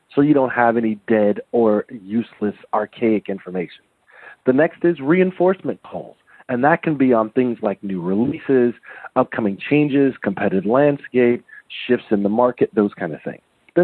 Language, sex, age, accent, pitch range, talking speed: English, male, 40-59, American, 105-130 Hz, 160 wpm